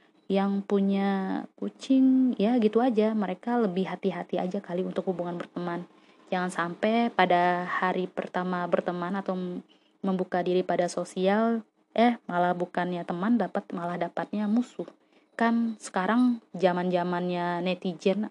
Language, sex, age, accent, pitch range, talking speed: Indonesian, female, 20-39, native, 180-220 Hz, 130 wpm